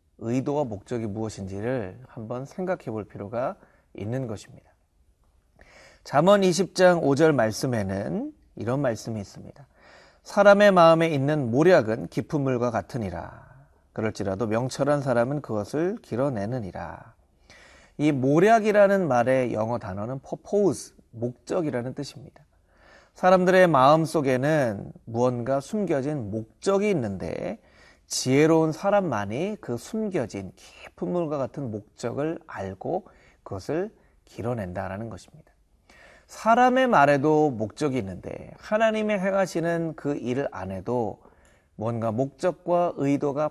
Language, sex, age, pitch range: Korean, male, 30-49, 110-165 Hz